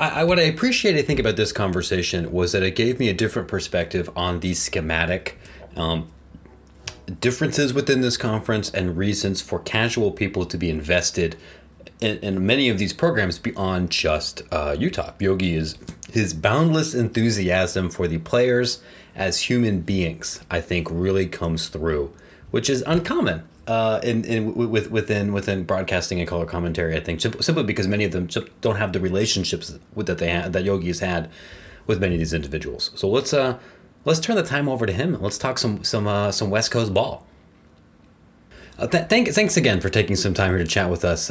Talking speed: 185 wpm